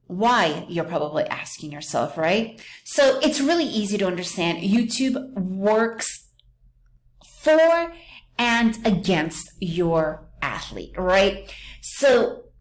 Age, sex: 30-49, female